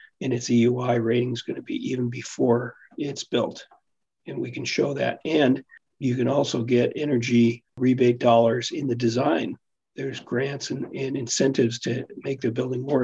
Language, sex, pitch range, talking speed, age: English, male, 120-135 Hz, 175 wpm, 50-69